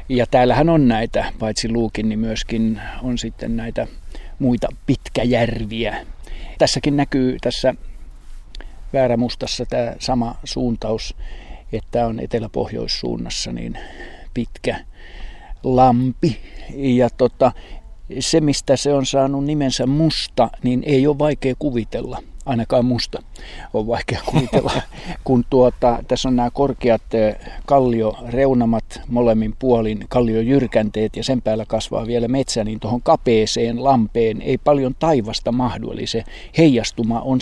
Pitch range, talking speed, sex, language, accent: 110-130 Hz, 115 wpm, male, Finnish, native